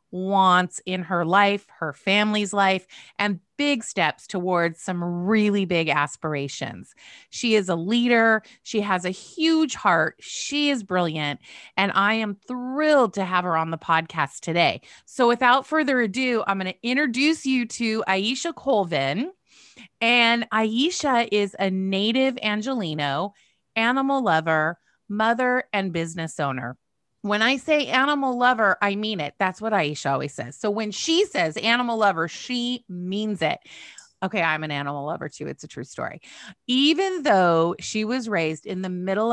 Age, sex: 30-49, female